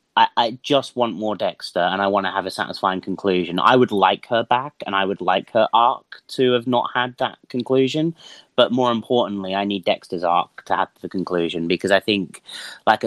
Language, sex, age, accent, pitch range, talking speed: English, male, 30-49, British, 100-130 Hz, 210 wpm